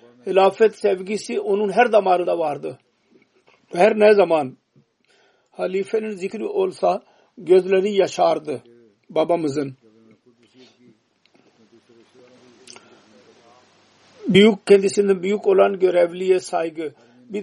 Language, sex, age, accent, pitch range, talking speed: Turkish, male, 50-69, Indian, 155-200 Hz, 80 wpm